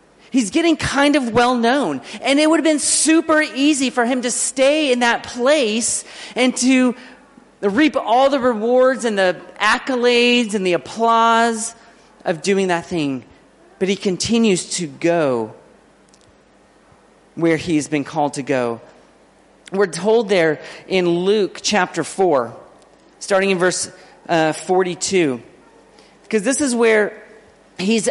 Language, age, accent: English, 40-59, American